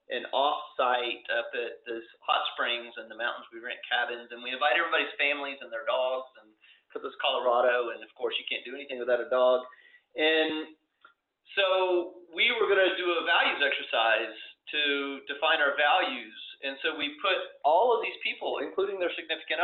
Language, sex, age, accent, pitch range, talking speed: English, male, 30-49, American, 135-185 Hz, 180 wpm